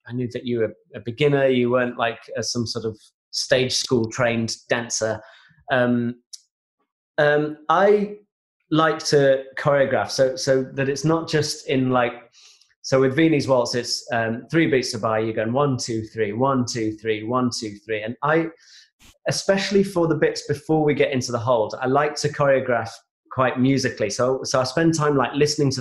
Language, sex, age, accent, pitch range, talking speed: English, male, 30-49, British, 120-150 Hz, 180 wpm